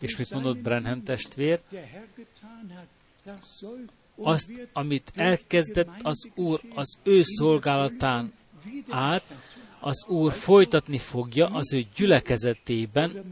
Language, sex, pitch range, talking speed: Hungarian, male, 130-190 Hz, 95 wpm